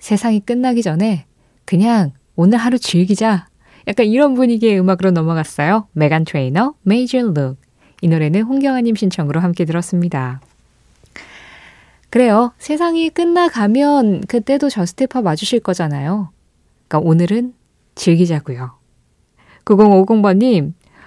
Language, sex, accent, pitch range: Korean, female, native, 165-240 Hz